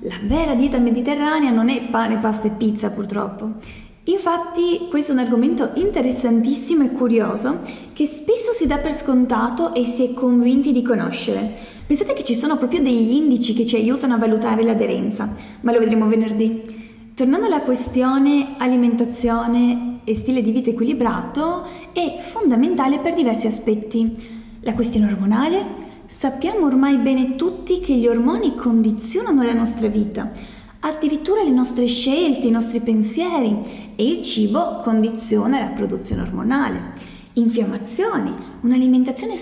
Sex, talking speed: female, 140 wpm